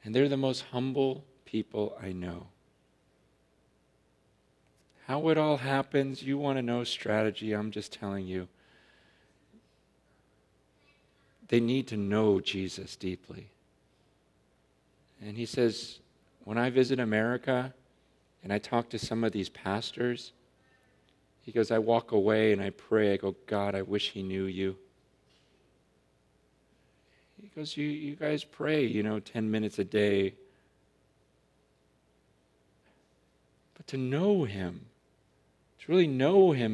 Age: 40-59